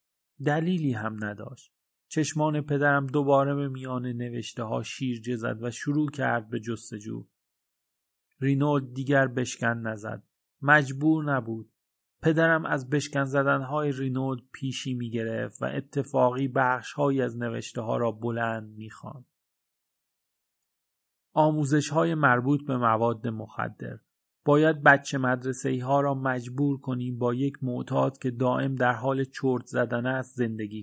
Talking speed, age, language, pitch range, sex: 125 wpm, 30-49, Persian, 115-140 Hz, male